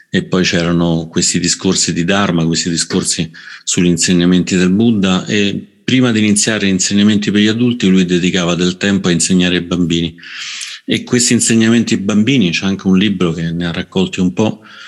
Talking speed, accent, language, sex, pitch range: 180 wpm, native, Italian, male, 90-100 Hz